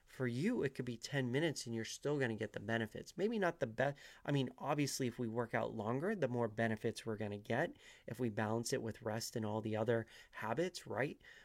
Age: 30-49